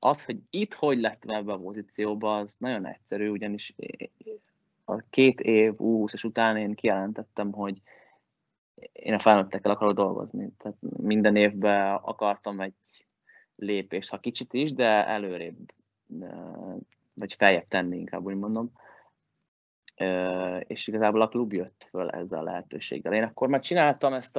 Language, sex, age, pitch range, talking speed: Hungarian, male, 20-39, 100-115 Hz, 140 wpm